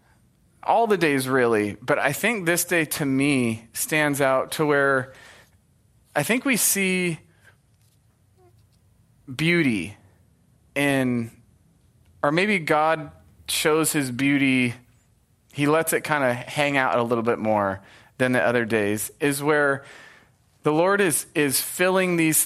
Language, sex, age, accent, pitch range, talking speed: English, male, 30-49, American, 115-150 Hz, 135 wpm